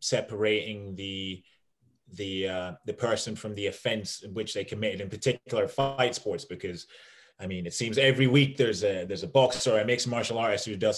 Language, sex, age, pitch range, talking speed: English, male, 30-49, 105-130 Hz, 195 wpm